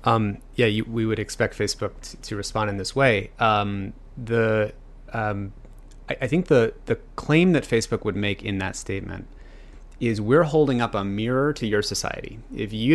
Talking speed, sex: 185 wpm, male